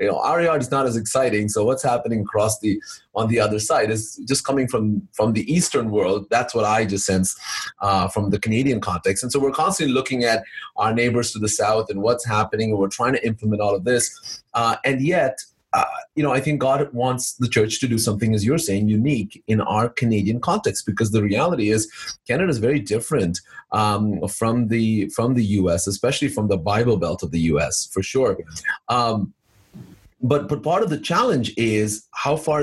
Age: 30-49